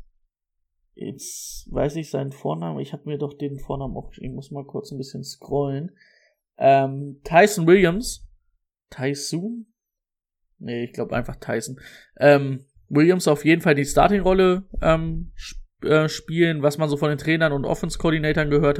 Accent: German